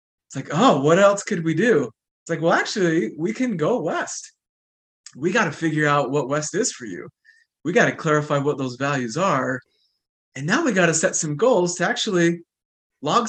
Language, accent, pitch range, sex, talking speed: English, American, 135-175 Hz, male, 205 wpm